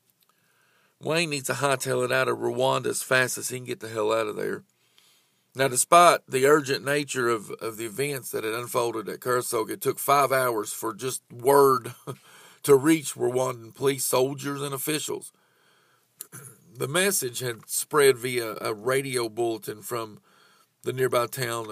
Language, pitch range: English, 120-145 Hz